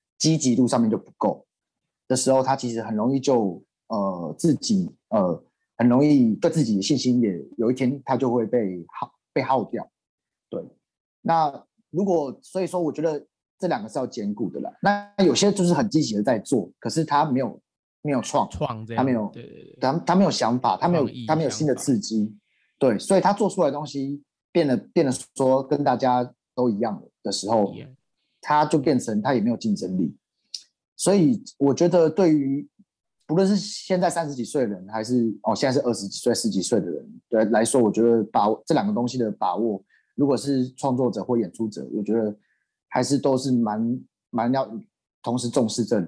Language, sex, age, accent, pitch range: Chinese, male, 30-49, native, 120-175 Hz